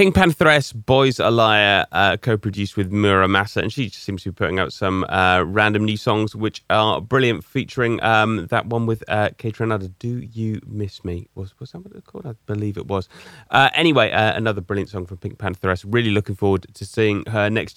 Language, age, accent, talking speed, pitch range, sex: English, 20-39, British, 220 wpm, 95-120 Hz, male